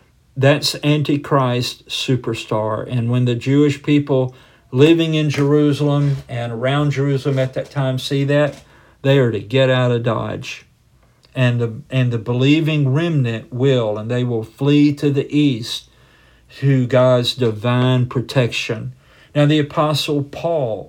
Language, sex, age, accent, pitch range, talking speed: English, male, 50-69, American, 125-145 Hz, 140 wpm